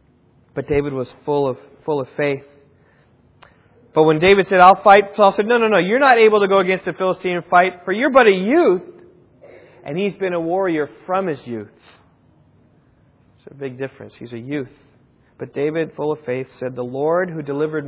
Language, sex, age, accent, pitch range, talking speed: English, male, 40-59, American, 125-165 Hz, 200 wpm